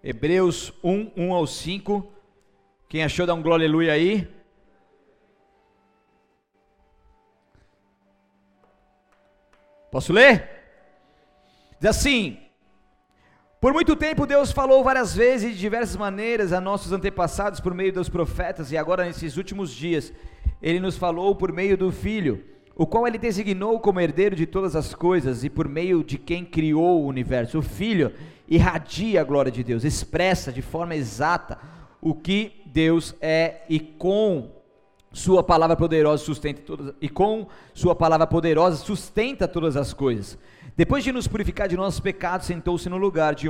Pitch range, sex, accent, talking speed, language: 140-190 Hz, male, Brazilian, 135 wpm, Portuguese